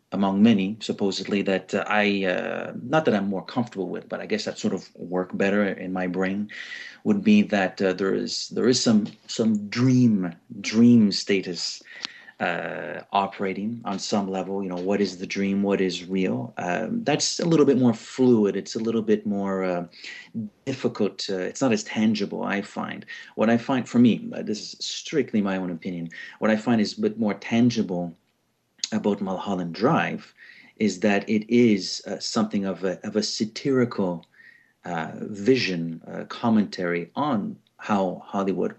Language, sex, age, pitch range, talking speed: English, male, 30-49, 95-120 Hz, 170 wpm